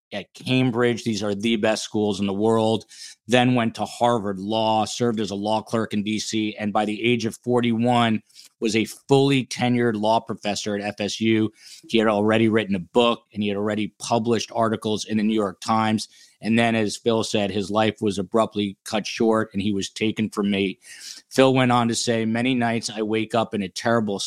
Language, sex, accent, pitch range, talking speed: English, male, American, 105-120 Hz, 205 wpm